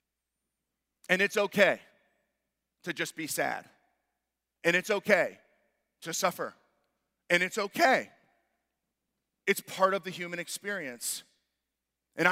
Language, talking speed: English, 105 wpm